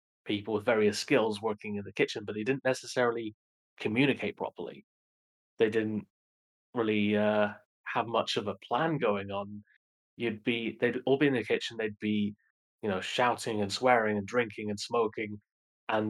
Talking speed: 170 wpm